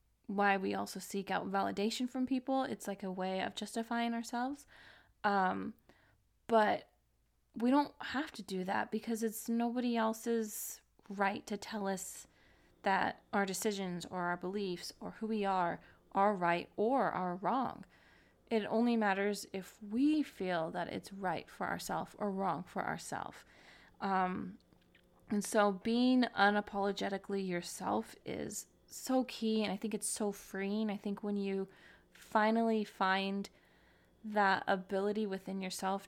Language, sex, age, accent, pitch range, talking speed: English, female, 20-39, American, 195-225 Hz, 145 wpm